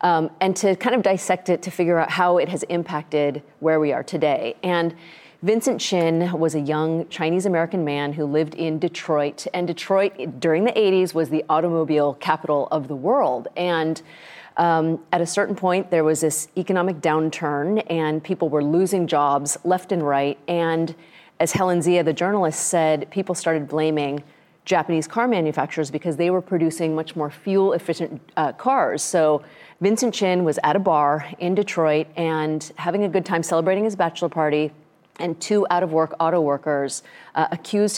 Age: 30-49